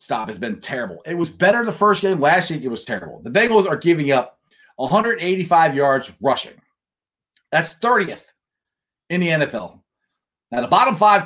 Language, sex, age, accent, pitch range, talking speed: English, male, 30-49, American, 135-205 Hz, 170 wpm